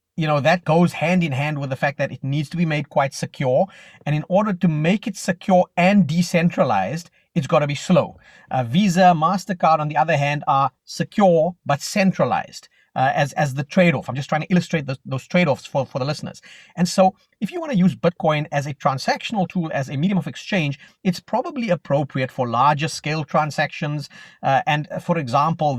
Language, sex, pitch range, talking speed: English, male, 145-180 Hz, 200 wpm